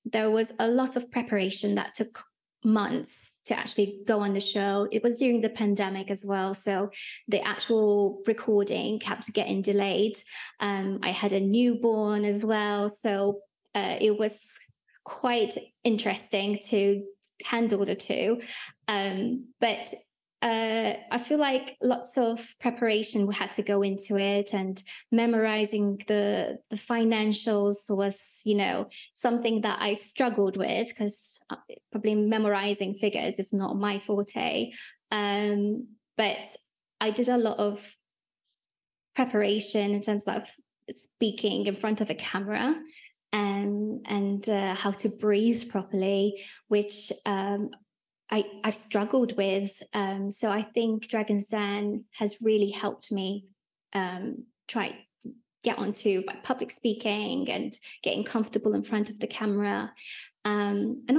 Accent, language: British, English